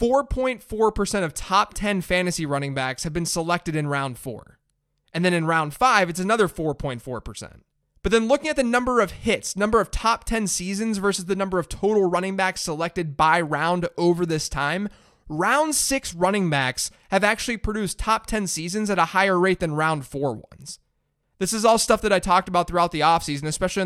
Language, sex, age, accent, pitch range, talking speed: English, male, 20-39, American, 155-205 Hz, 190 wpm